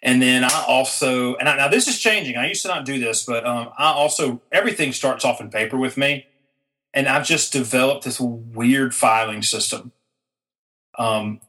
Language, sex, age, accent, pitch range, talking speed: English, male, 30-49, American, 115-135 Hz, 190 wpm